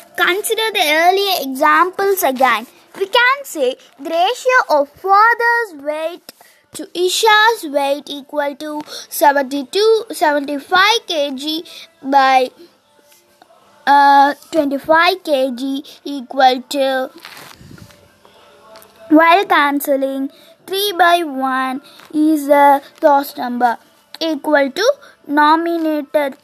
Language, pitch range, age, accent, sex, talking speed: Tamil, 280-365 Hz, 20-39, native, female, 90 wpm